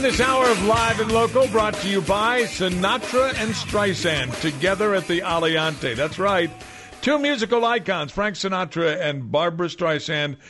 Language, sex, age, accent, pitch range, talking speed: English, male, 60-79, American, 135-190 Hz, 160 wpm